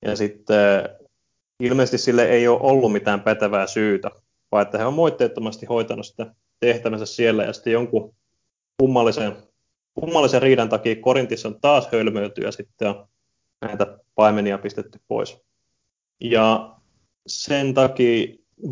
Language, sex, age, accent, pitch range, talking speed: Finnish, male, 20-39, native, 105-120 Hz, 130 wpm